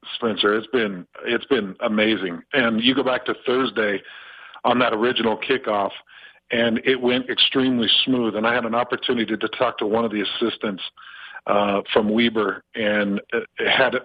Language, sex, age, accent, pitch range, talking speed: English, male, 50-69, American, 115-150 Hz, 160 wpm